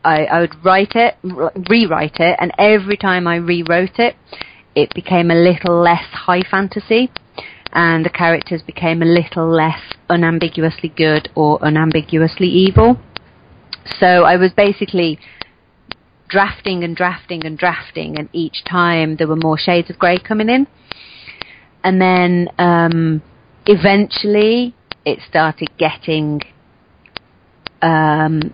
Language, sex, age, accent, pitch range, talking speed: English, female, 30-49, British, 160-190 Hz, 125 wpm